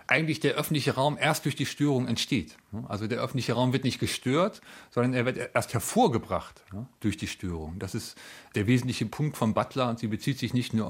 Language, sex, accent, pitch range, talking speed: German, male, German, 115-135 Hz, 205 wpm